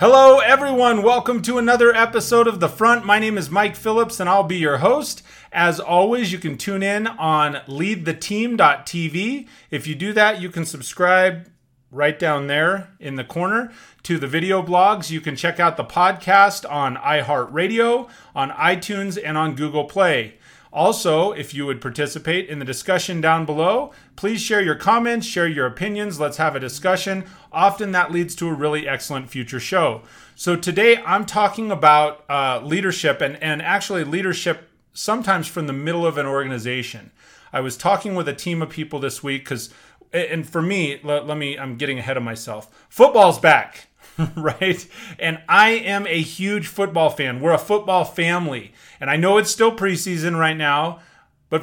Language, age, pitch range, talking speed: English, 30-49, 140-195 Hz, 175 wpm